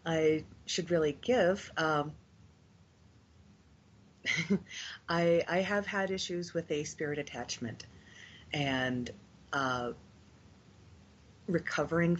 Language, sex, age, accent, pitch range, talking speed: English, female, 30-49, American, 145-200 Hz, 85 wpm